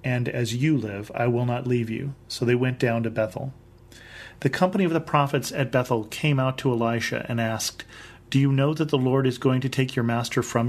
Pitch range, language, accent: 115-135 Hz, English, American